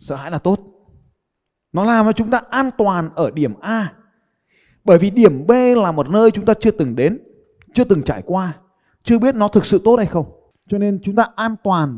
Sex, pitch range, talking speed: male, 145-210 Hz, 220 wpm